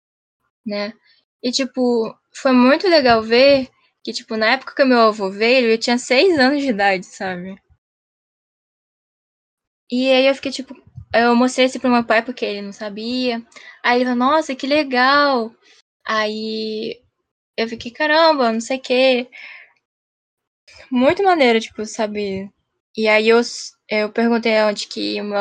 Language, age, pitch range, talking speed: Portuguese, 10-29, 210-250 Hz, 150 wpm